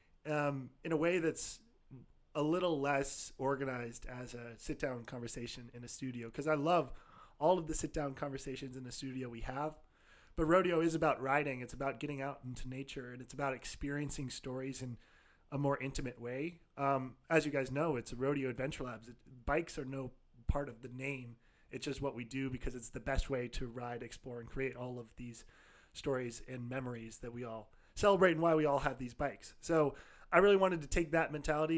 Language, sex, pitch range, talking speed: English, male, 125-150 Hz, 210 wpm